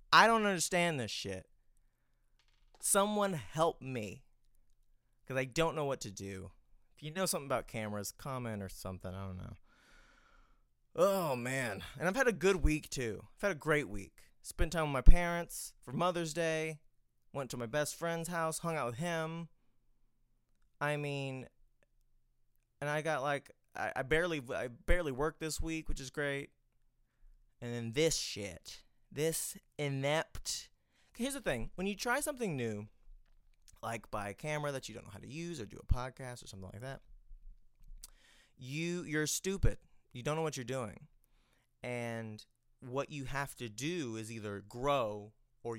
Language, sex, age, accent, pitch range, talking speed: English, male, 20-39, American, 110-155 Hz, 170 wpm